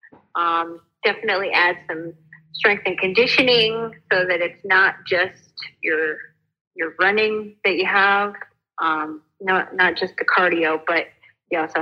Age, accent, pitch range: 30-49, American, 165-210 Hz